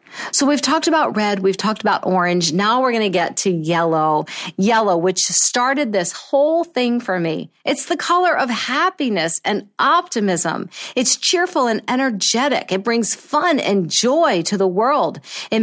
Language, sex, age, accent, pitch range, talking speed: English, female, 50-69, American, 185-250 Hz, 170 wpm